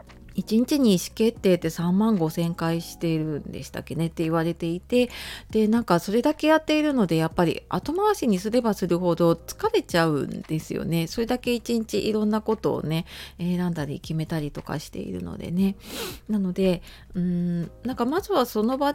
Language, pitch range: Japanese, 165-240 Hz